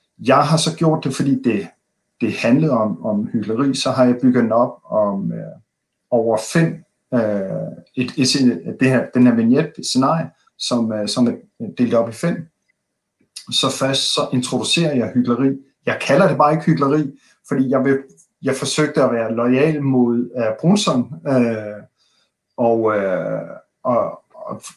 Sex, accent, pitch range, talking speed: male, native, 120-160 Hz, 140 wpm